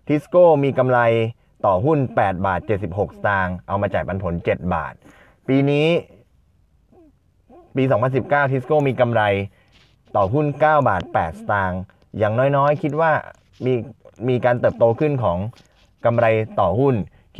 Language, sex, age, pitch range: Thai, male, 20-39, 100-140 Hz